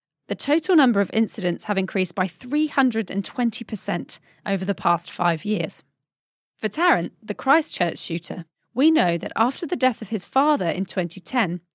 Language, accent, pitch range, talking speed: English, British, 180-245 Hz, 155 wpm